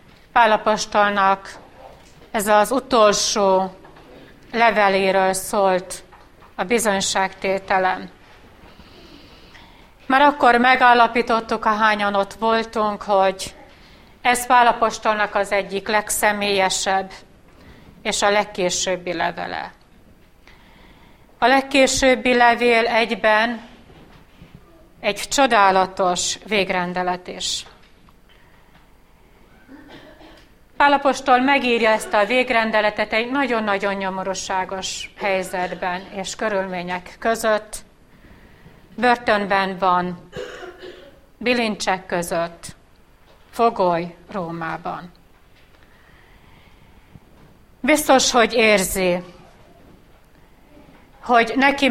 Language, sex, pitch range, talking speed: Hungarian, female, 190-235 Hz, 65 wpm